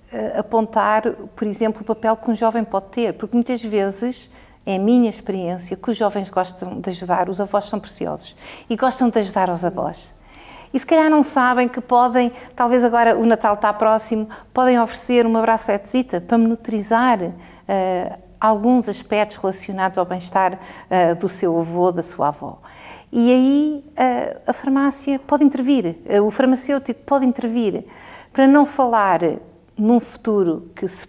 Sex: female